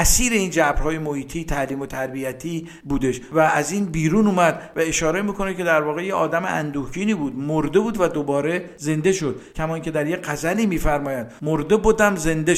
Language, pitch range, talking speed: Persian, 150-190 Hz, 180 wpm